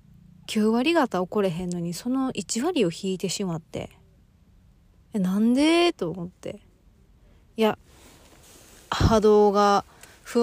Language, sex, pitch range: Japanese, female, 160-205 Hz